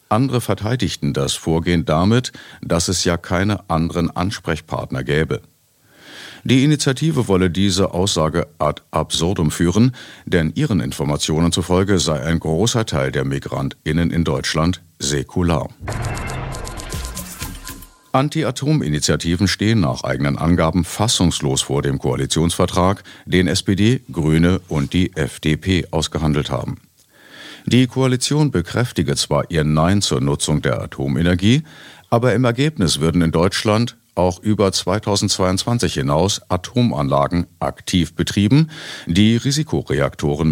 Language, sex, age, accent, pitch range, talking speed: German, male, 50-69, German, 80-105 Hz, 110 wpm